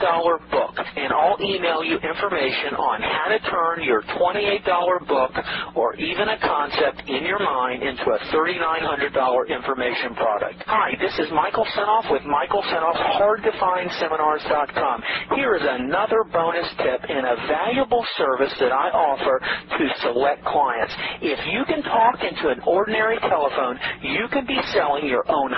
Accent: American